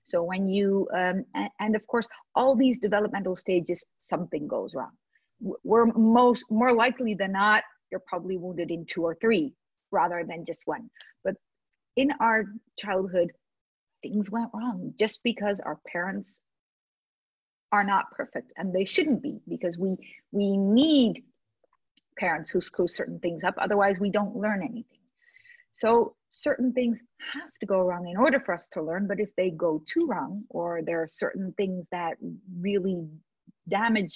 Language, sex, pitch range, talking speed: English, female, 180-230 Hz, 160 wpm